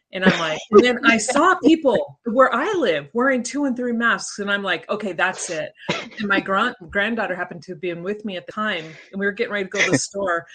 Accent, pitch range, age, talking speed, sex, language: American, 185-240 Hz, 30-49, 255 wpm, female, English